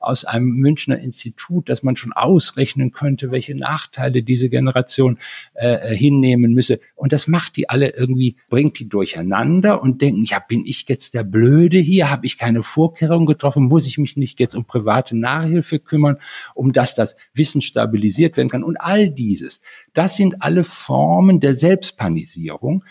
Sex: male